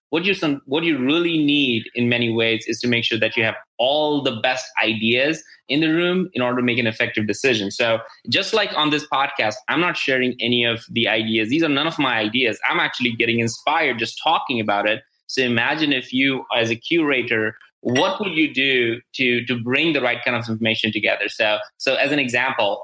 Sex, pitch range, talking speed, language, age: male, 115-145 Hz, 220 wpm, English, 20-39